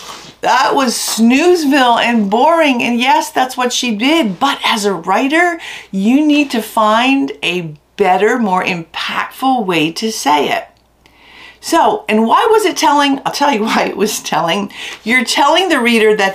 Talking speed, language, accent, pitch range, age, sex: 165 wpm, English, American, 205-275 Hz, 50-69, female